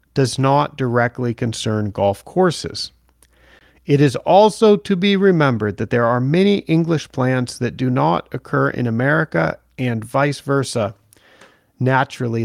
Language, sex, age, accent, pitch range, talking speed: English, male, 40-59, American, 120-155 Hz, 135 wpm